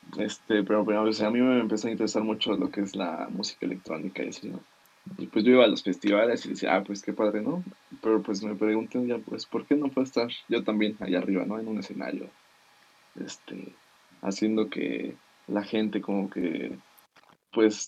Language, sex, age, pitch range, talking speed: Spanish, male, 20-39, 105-125 Hz, 205 wpm